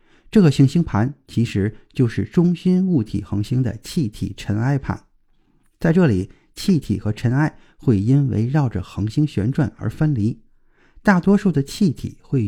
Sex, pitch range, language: male, 105-150 Hz, Chinese